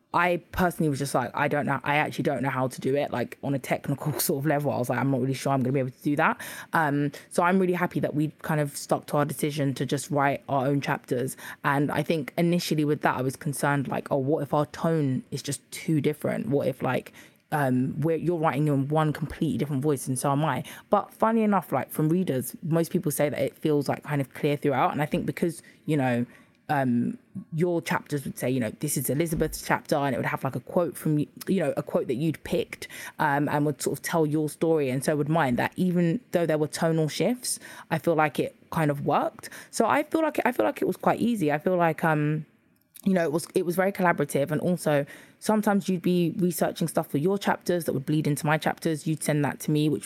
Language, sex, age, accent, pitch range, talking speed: English, female, 20-39, British, 145-175 Hz, 255 wpm